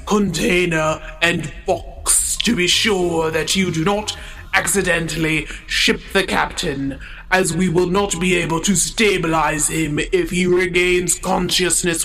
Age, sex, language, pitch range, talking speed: 30-49, male, English, 160-190 Hz, 135 wpm